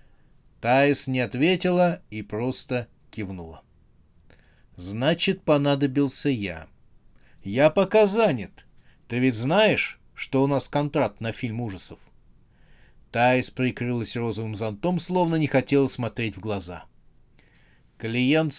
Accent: native